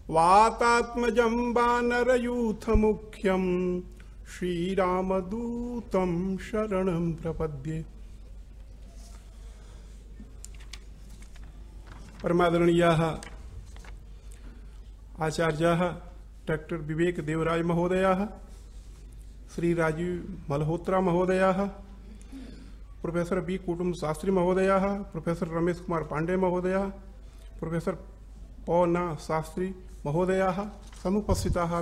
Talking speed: 60 wpm